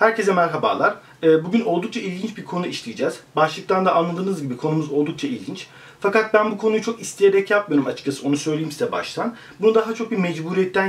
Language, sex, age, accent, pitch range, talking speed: Turkish, male, 40-59, native, 165-215 Hz, 175 wpm